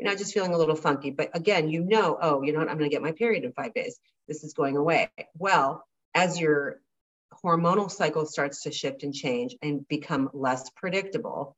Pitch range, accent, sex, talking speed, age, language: 145-185 Hz, American, female, 210 wpm, 40-59, English